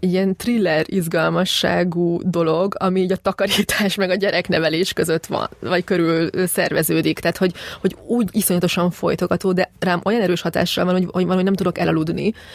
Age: 20-39